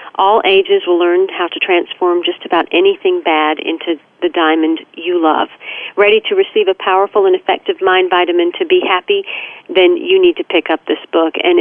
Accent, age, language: American, 40-59, English